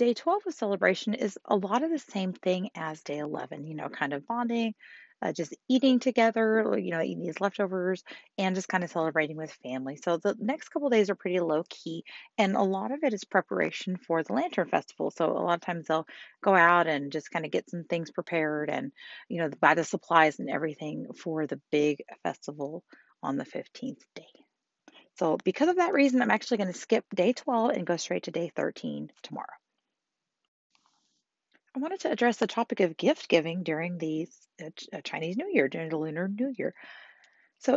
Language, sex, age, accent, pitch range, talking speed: English, female, 30-49, American, 165-230 Hz, 205 wpm